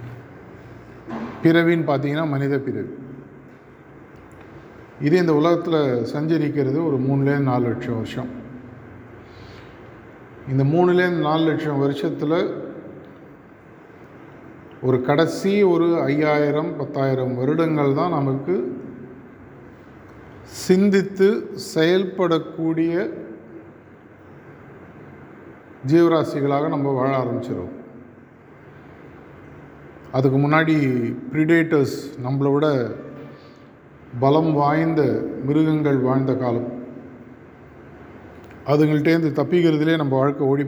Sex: male